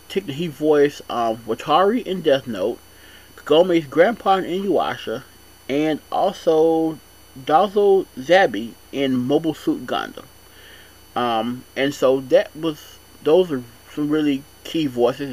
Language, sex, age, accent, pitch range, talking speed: English, male, 30-49, American, 120-180 Hz, 115 wpm